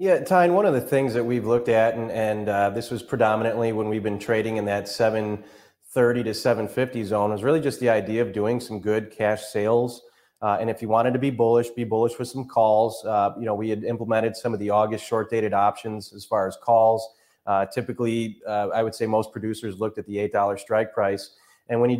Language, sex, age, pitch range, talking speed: English, male, 30-49, 110-125 Hz, 225 wpm